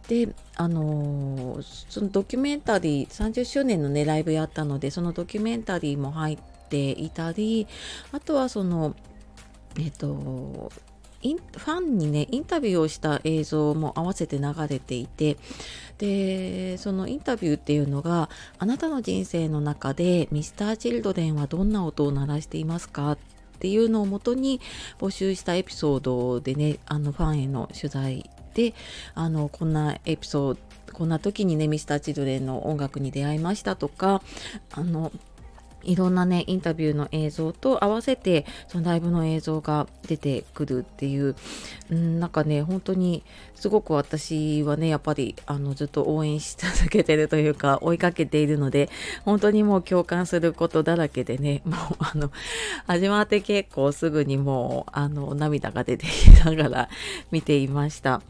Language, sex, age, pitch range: Japanese, female, 30-49, 145-185 Hz